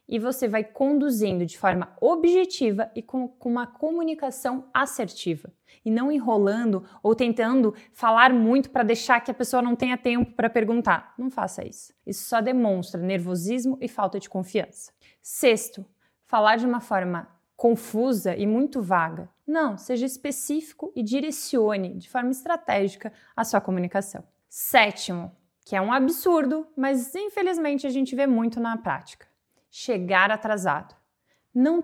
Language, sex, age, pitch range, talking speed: Portuguese, female, 20-39, 220-280 Hz, 145 wpm